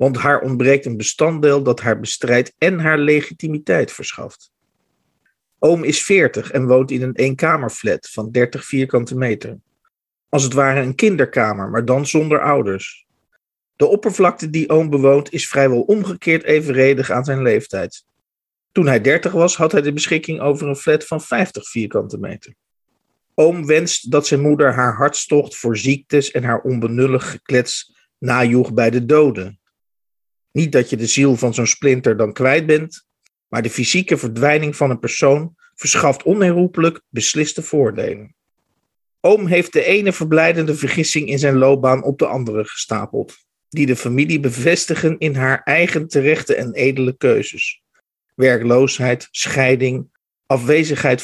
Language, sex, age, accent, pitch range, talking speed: Dutch, male, 50-69, Dutch, 125-155 Hz, 150 wpm